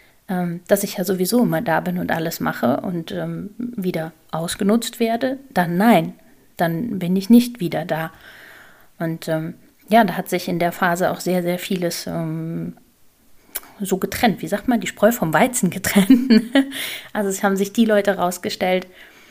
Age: 30-49